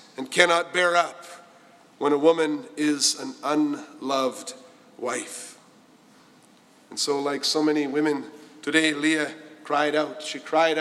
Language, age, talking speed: English, 50-69, 130 wpm